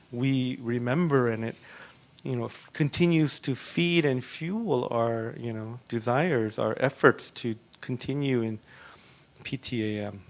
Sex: male